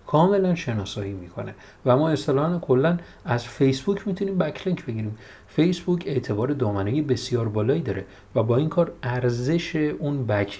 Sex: male